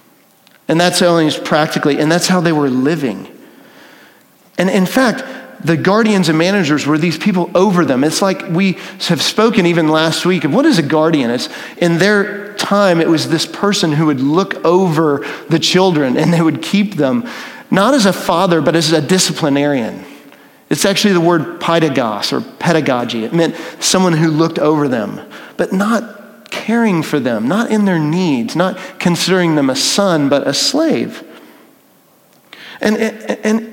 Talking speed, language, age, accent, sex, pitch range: 175 wpm, English, 40-59, American, male, 150-200 Hz